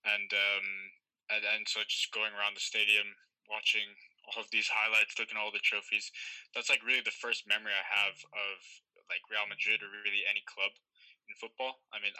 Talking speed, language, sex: 195 wpm, English, male